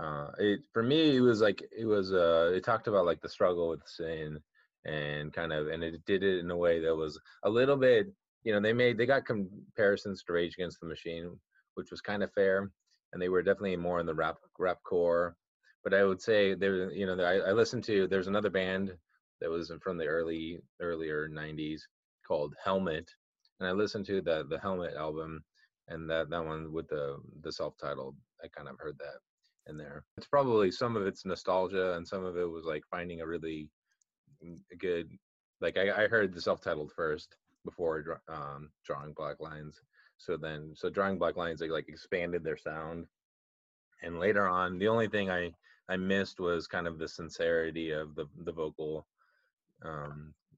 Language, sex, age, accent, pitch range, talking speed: English, male, 20-39, American, 75-95 Hz, 195 wpm